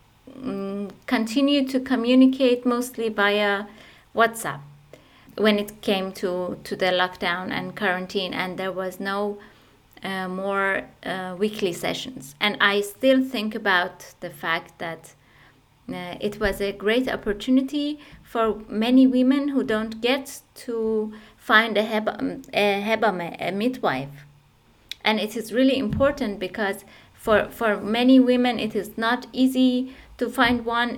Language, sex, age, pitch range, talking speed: German, female, 20-39, 185-235 Hz, 135 wpm